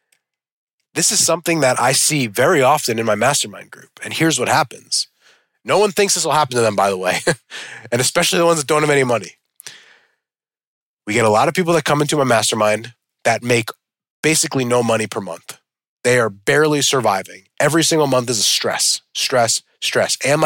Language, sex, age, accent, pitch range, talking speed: English, male, 20-39, American, 120-155 Hz, 195 wpm